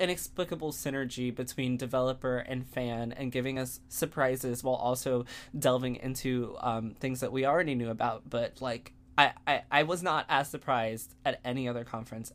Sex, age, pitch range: male, 20-39, 120-165 Hz